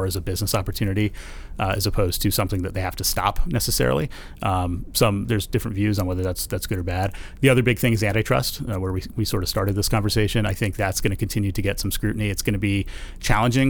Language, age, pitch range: English, 30-49, 95-115 Hz